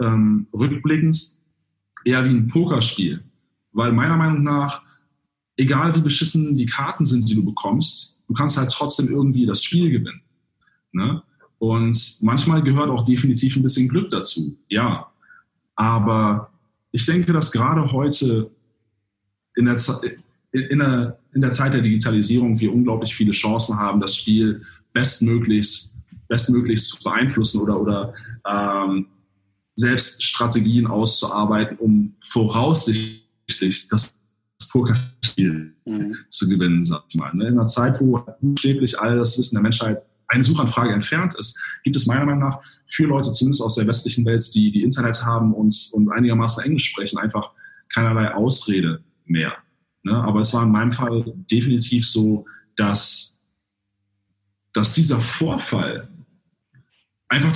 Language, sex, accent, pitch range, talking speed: German, male, German, 105-130 Hz, 135 wpm